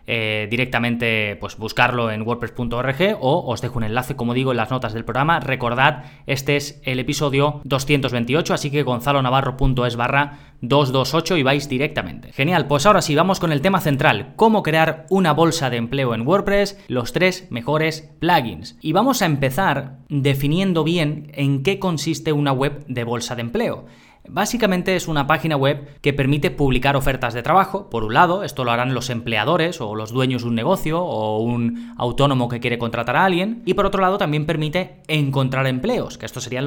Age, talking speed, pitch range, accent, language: 20-39, 185 wpm, 120-155 Hz, Spanish, Spanish